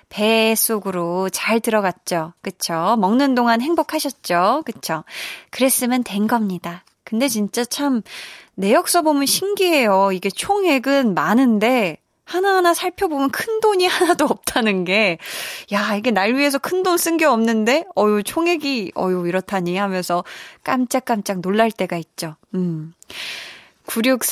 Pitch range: 195-275 Hz